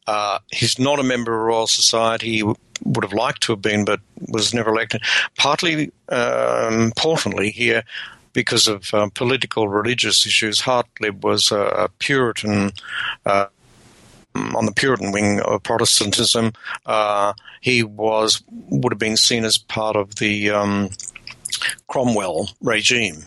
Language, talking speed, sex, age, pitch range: English, 135 wpm, male, 60-79, 105-120 Hz